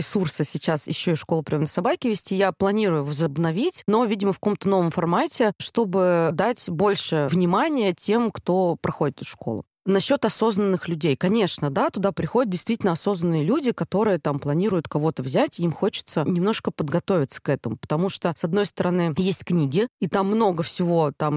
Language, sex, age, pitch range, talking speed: Russian, female, 20-39, 165-205 Hz, 170 wpm